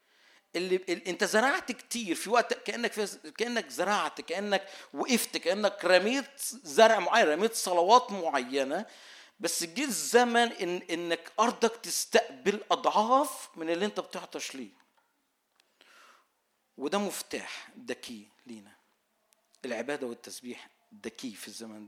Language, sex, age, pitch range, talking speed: Arabic, male, 50-69, 140-215 Hz, 110 wpm